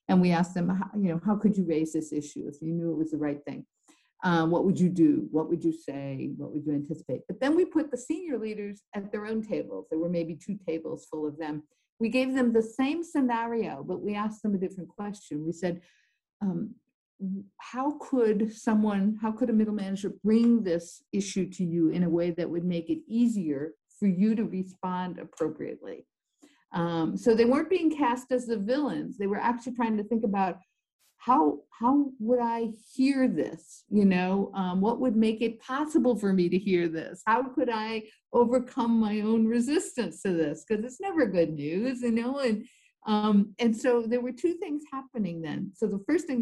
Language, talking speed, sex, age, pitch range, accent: English, 205 wpm, female, 50-69, 175-240 Hz, American